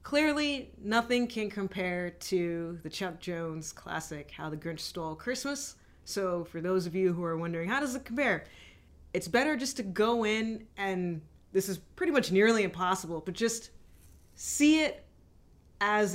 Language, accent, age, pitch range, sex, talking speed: English, American, 30-49, 170-220 Hz, female, 165 wpm